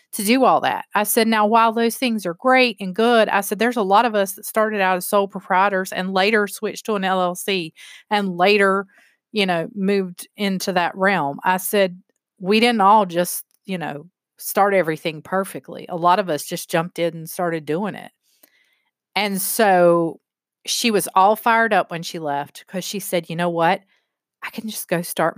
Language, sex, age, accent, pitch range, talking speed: English, female, 30-49, American, 165-210 Hz, 200 wpm